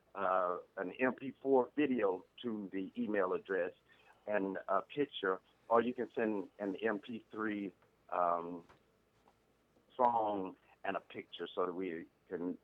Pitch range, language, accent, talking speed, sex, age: 105-135 Hz, English, American, 125 wpm, male, 50-69